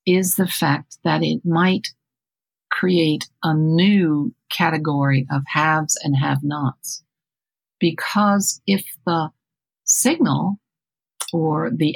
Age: 60-79